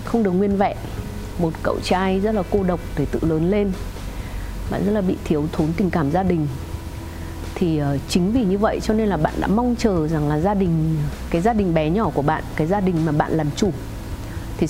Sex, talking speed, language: female, 230 wpm, Vietnamese